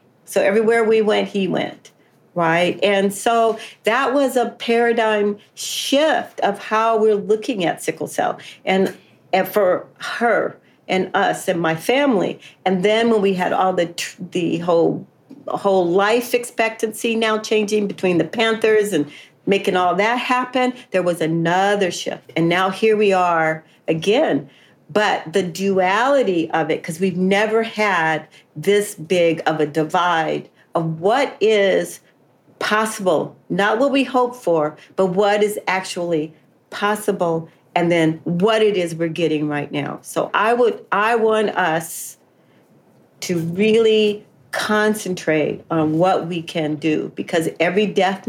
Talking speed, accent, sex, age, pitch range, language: 145 wpm, American, female, 50-69, 170-215 Hz, English